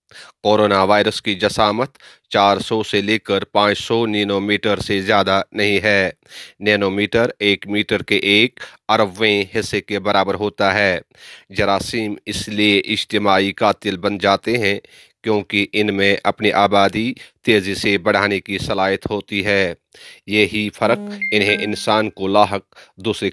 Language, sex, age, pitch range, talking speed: Urdu, male, 30-49, 100-105 Hz, 145 wpm